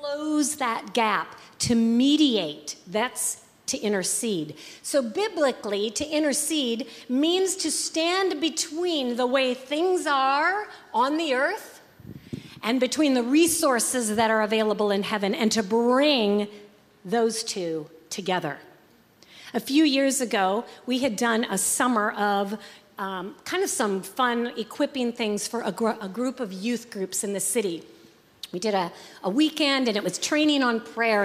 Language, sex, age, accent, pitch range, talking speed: English, female, 40-59, American, 210-275 Hz, 145 wpm